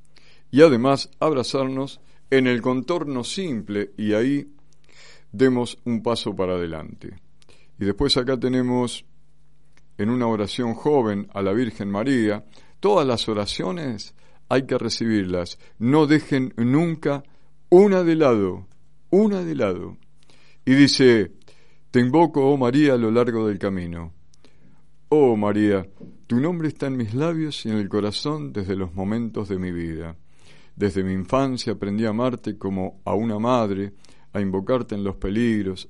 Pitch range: 100-135 Hz